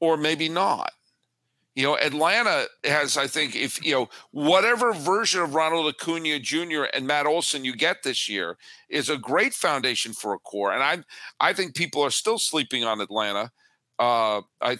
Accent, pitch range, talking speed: American, 125-170 Hz, 180 wpm